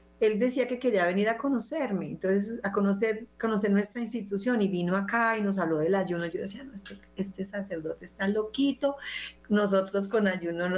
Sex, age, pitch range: female, 40-59, 180-225 Hz